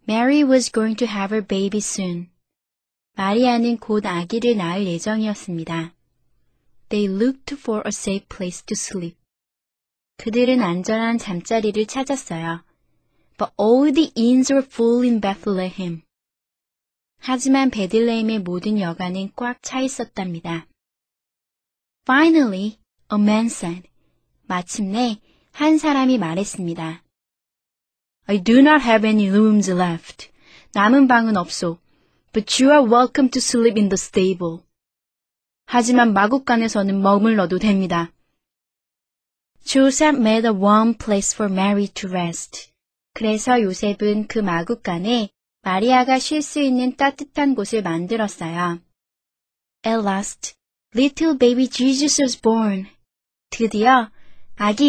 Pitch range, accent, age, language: 190-250 Hz, native, 20-39, Korean